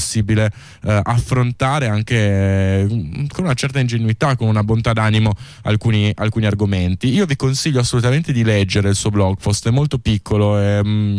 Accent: native